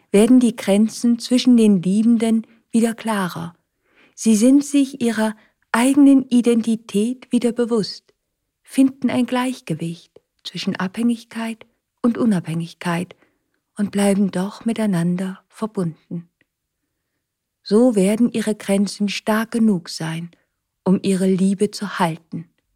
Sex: female